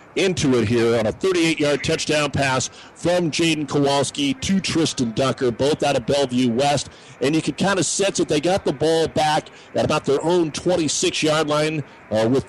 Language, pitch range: English, 130-160 Hz